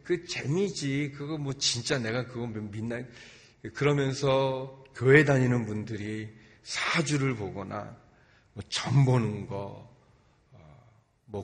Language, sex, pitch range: Korean, male, 110-140 Hz